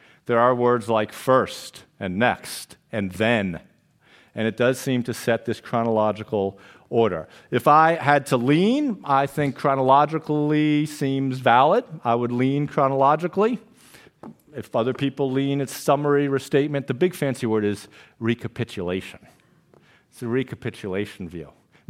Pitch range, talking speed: 115-160 Hz, 140 wpm